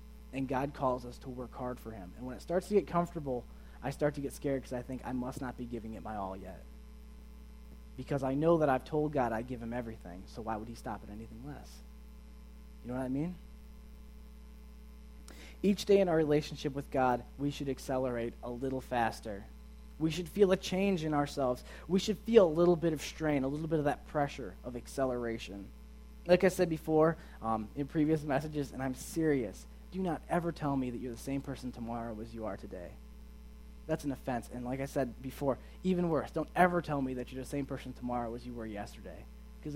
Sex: male